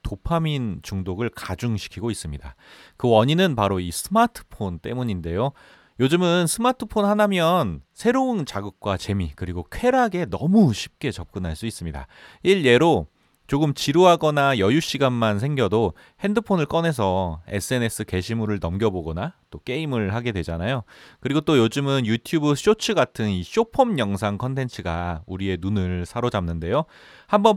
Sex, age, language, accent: male, 30-49, Korean, native